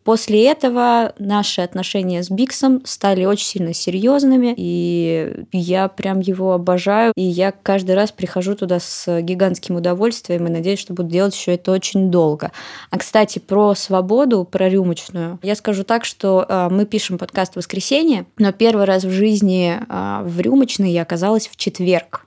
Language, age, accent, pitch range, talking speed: Russian, 20-39, native, 180-220 Hz, 160 wpm